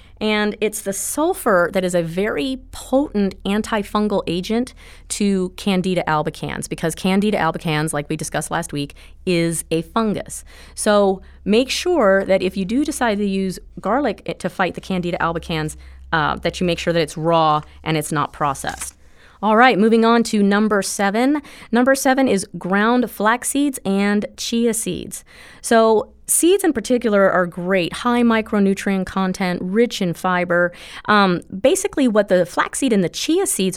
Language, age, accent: English, 30-49, American